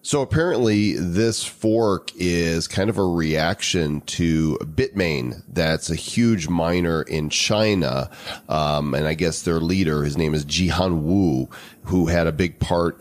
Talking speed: 150 wpm